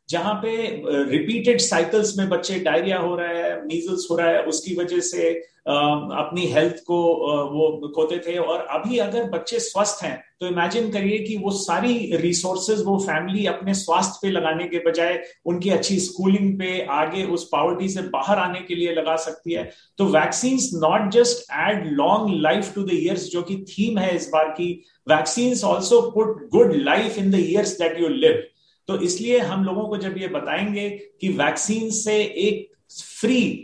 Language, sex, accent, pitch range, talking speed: Hindi, male, native, 170-205 Hz, 180 wpm